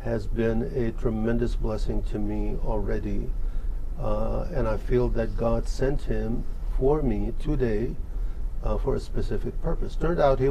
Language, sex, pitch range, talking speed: English, male, 115-130 Hz, 155 wpm